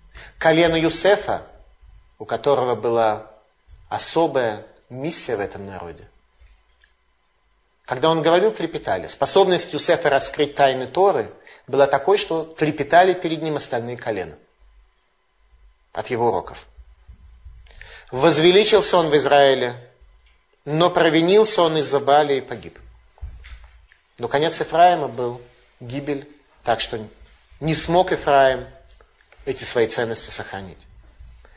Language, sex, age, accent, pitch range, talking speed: Russian, male, 30-49, native, 120-160 Hz, 105 wpm